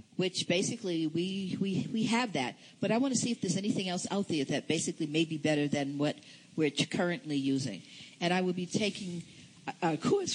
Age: 60-79